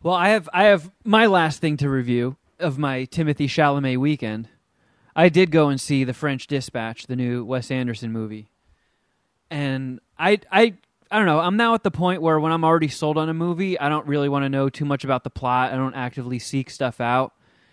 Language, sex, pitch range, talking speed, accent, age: English, male, 130-180 Hz, 215 wpm, American, 20-39